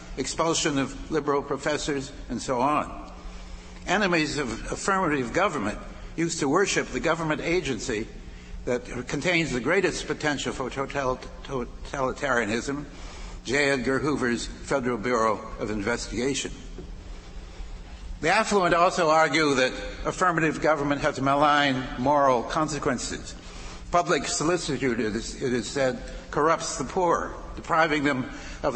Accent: American